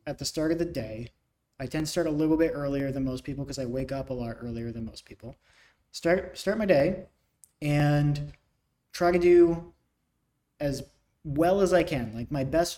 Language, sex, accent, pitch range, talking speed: English, male, American, 135-165 Hz, 200 wpm